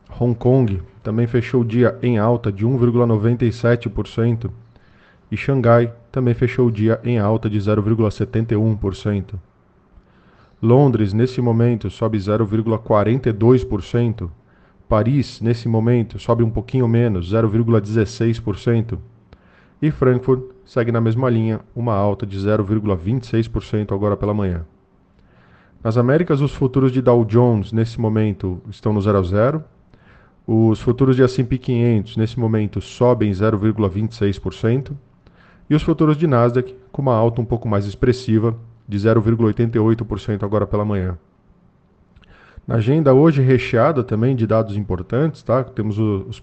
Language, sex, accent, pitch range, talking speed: Portuguese, male, Brazilian, 105-120 Hz, 120 wpm